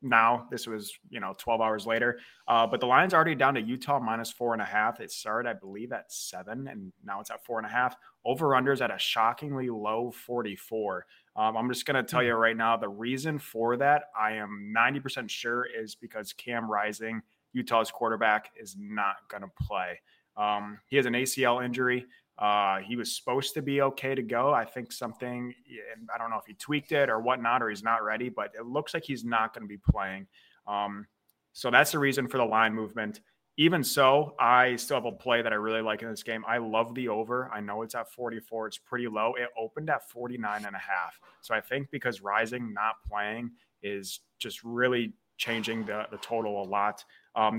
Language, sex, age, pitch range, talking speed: English, male, 20-39, 110-125 Hz, 215 wpm